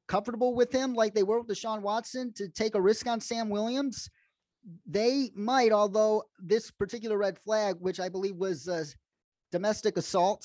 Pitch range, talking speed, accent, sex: 155-205 Hz, 170 wpm, American, male